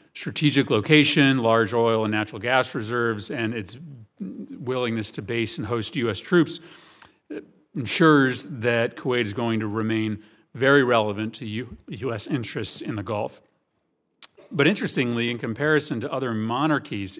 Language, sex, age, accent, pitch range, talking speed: English, male, 40-59, American, 110-140 Hz, 135 wpm